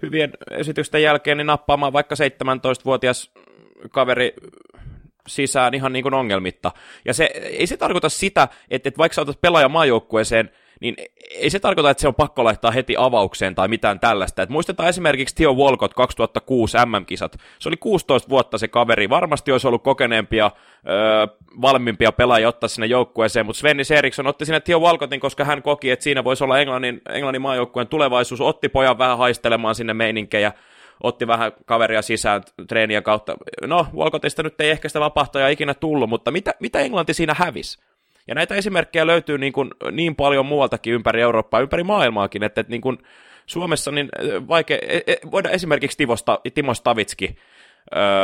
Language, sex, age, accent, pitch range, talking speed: Finnish, male, 30-49, native, 110-145 Hz, 160 wpm